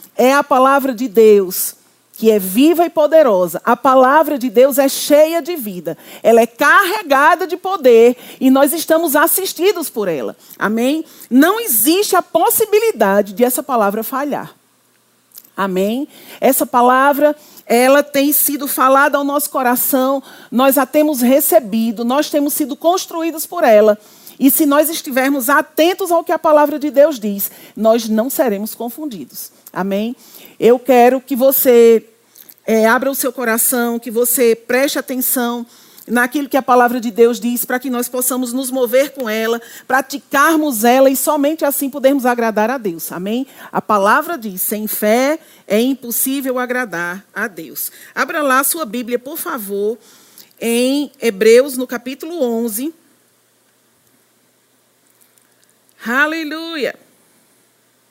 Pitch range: 235-300 Hz